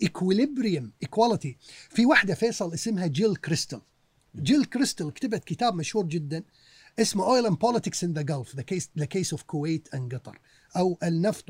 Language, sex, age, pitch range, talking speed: Arabic, male, 40-59, 145-205 Hz, 105 wpm